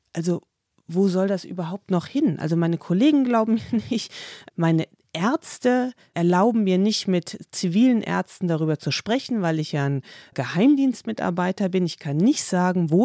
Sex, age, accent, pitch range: female, 30-49, German, 160-205 Hz